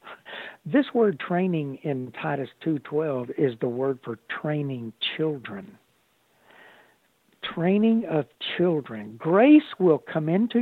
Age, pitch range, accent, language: 60-79, 130-175 Hz, American, English